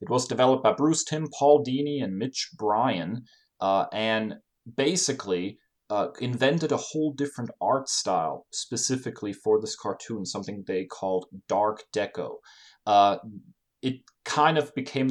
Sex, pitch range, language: male, 105-140 Hz, English